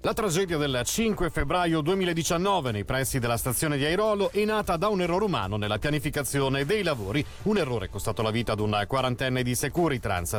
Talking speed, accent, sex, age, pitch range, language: 190 wpm, native, male, 40-59, 120-170 Hz, Italian